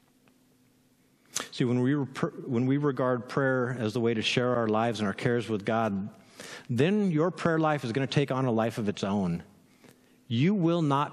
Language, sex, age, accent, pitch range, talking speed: English, male, 50-69, American, 120-160 Hz, 195 wpm